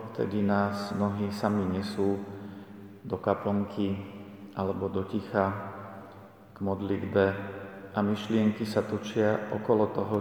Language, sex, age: Slovak, male, 40-59